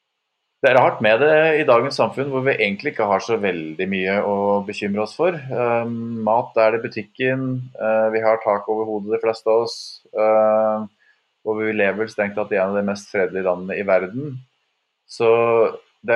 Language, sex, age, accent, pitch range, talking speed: English, male, 20-39, Norwegian, 100-125 Hz, 195 wpm